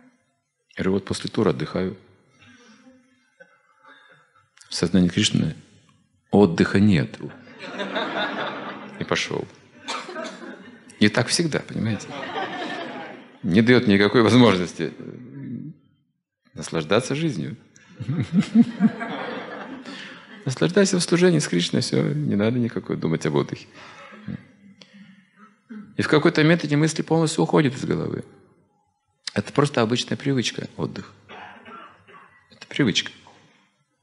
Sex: male